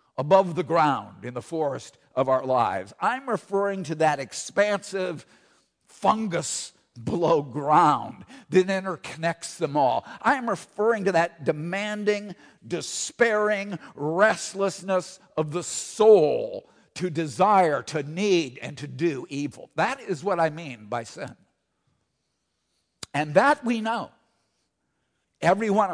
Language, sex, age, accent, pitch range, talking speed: English, male, 50-69, American, 140-205 Hz, 125 wpm